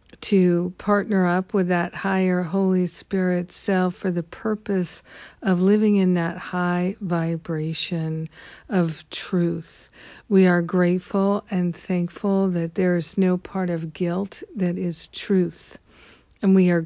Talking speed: 135 wpm